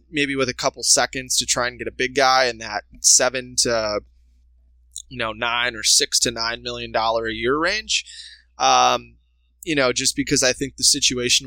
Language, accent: English, American